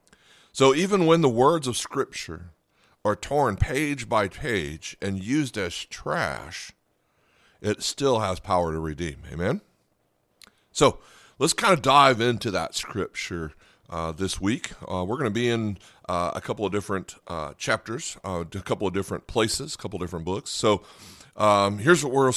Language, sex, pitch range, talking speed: English, male, 95-125 Hz, 170 wpm